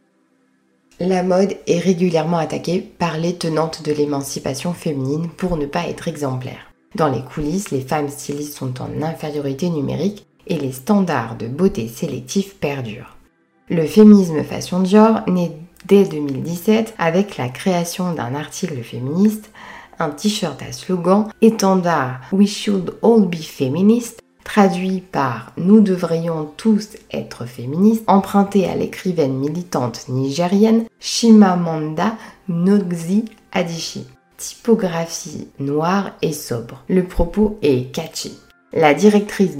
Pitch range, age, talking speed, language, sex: 145-200 Hz, 20-39, 125 wpm, French, female